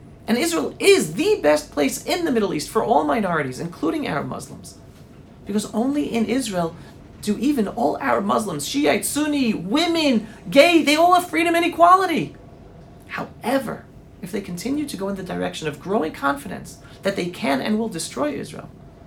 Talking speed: 170 wpm